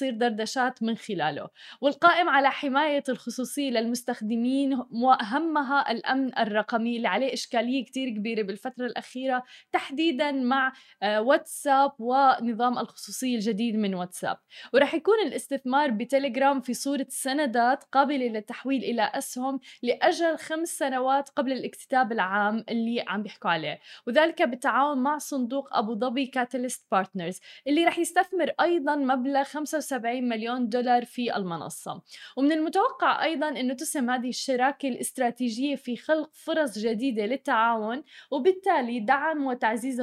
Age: 20-39